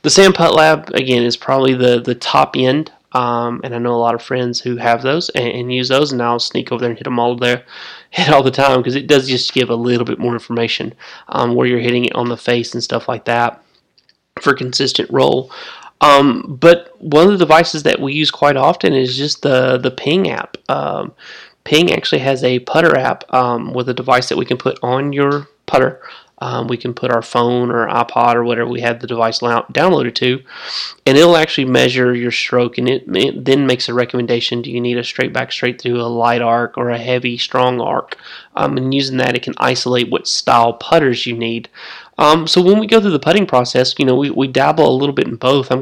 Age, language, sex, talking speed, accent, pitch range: 20-39, English, male, 230 wpm, American, 120-140 Hz